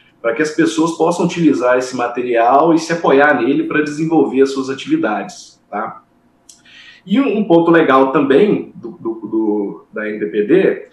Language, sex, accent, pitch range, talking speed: Portuguese, male, Brazilian, 130-215 Hz, 155 wpm